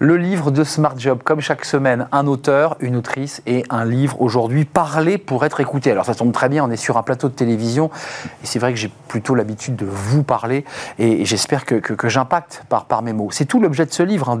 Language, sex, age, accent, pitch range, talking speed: French, male, 40-59, French, 115-160 Hz, 245 wpm